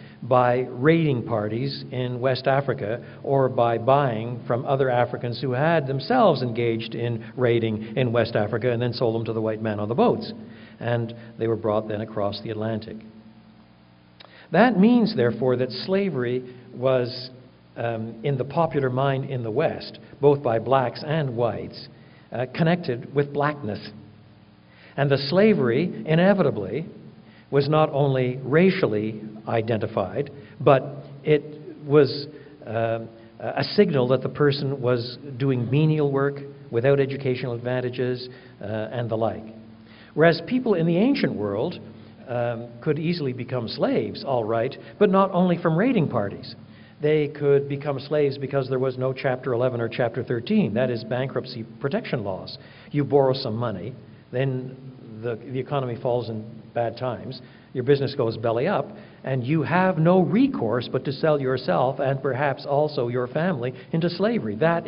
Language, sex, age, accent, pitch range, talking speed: English, male, 60-79, American, 115-145 Hz, 150 wpm